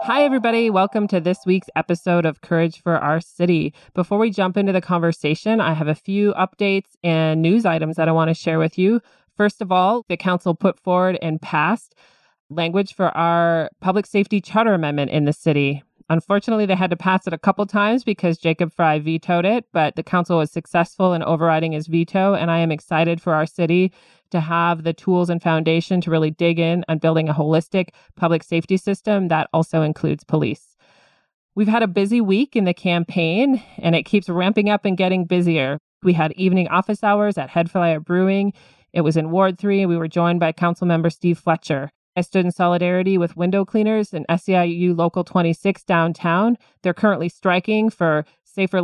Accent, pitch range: American, 165-195 Hz